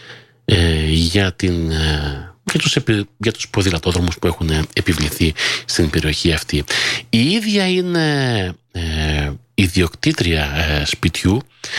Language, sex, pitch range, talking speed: Greek, male, 95-145 Hz, 110 wpm